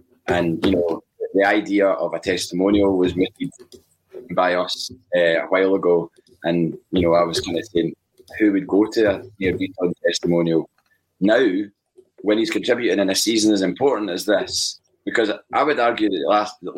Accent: British